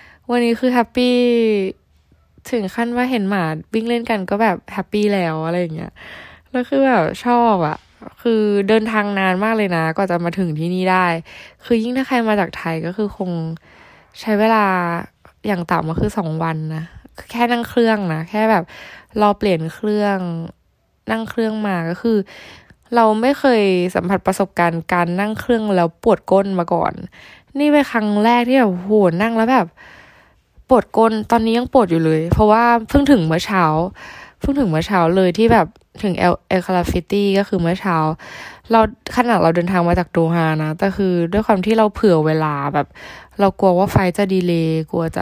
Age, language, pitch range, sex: 10-29, Thai, 170-225 Hz, female